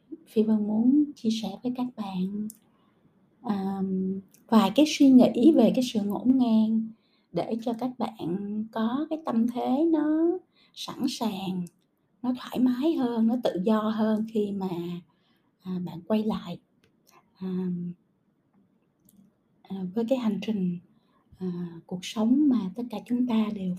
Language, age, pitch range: Vietnamese, 20-39, 205-255 Hz